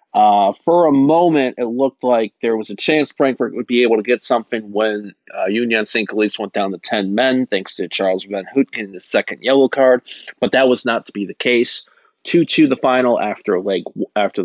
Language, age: English, 30-49